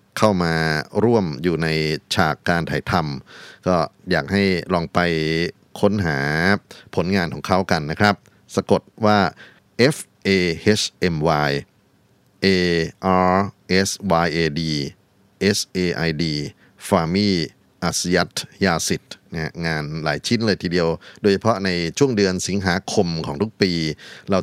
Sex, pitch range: male, 85-100 Hz